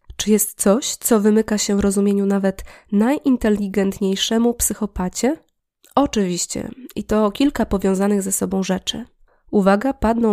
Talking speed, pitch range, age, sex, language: 120 wpm, 195-235 Hz, 20-39, female, Polish